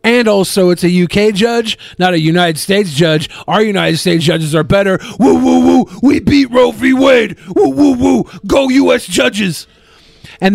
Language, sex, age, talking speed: English, male, 40-59, 180 wpm